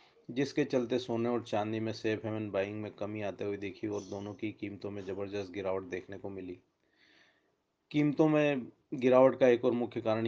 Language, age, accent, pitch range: English, 20-39, Indian, 100-110 Hz